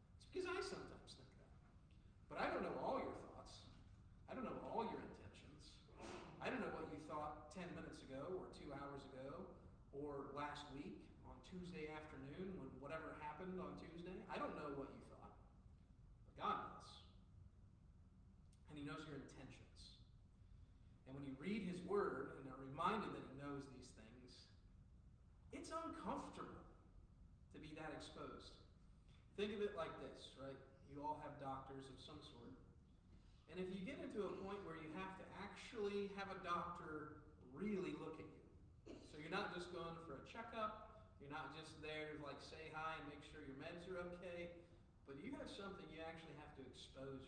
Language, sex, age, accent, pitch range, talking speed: English, male, 40-59, American, 105-175 Hz, 175 wpm